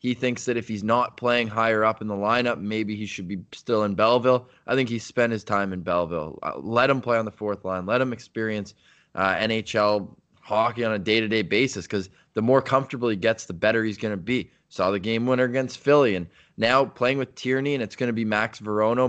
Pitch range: 105-125 Hz